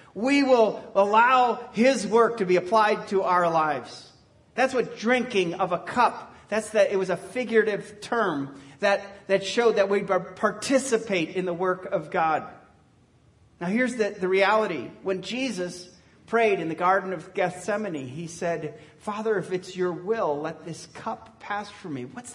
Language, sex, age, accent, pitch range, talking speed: English, male, 40-59, American, 140-220 Hz, 165 wpm